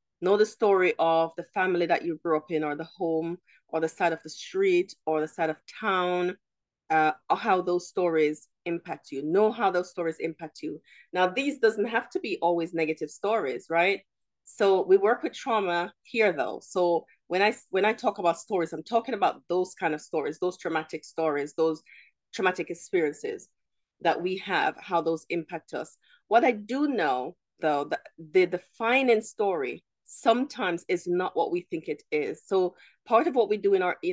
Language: English